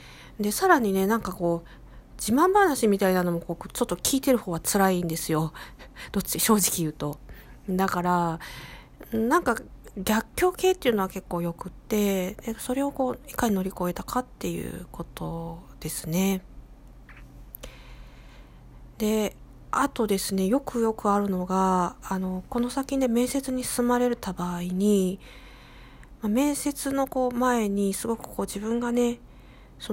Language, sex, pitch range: Japanese, female, 180-240 Hz